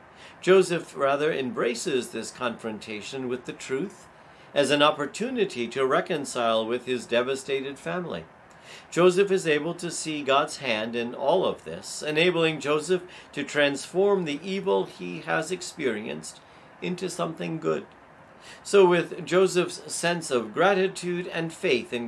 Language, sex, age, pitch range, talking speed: English, male, 50-69, 135-175 Hz, 135 wpm